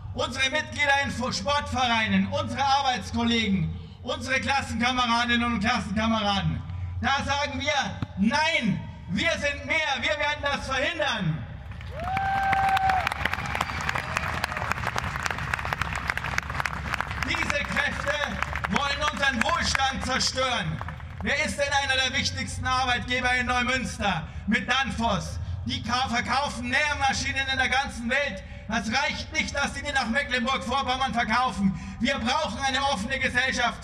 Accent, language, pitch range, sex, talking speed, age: German, German, 215-285 Hz, male, 105 wpm, 60-79